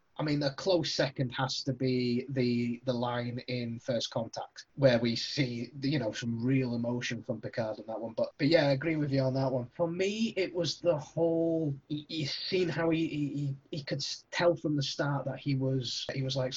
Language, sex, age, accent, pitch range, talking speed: English, male, 20-39, British, 125-155 Hz, 215 wpm